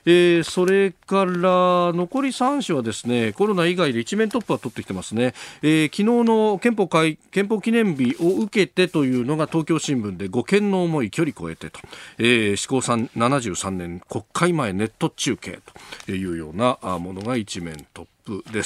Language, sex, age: Japanese, male, 40-59